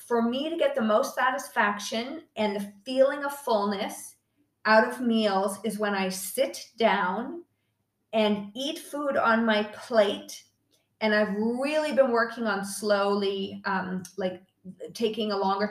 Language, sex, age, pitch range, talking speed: English, female, 40-59, 200-230 Hz, 145 wpm